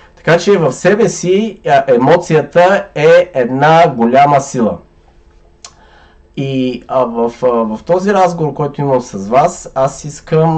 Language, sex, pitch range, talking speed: Bulgarian, male, 125-165 Hz, 130 wpm